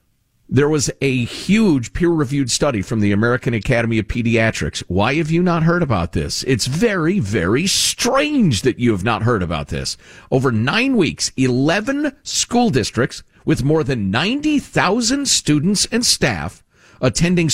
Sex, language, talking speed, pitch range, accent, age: male, English, 150 wpm, 115-175 Hz, American, 50-69